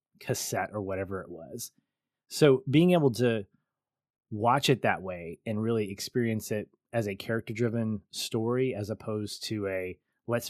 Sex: male